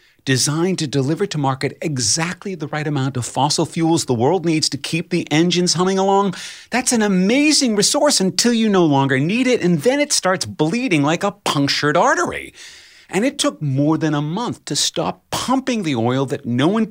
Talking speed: 195 wpm